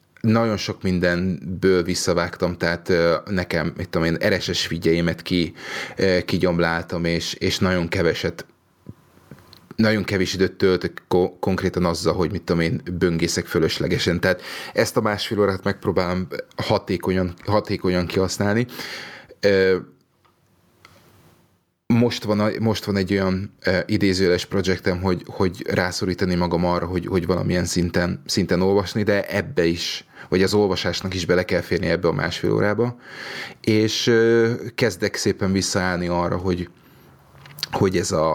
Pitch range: 90-100 Hz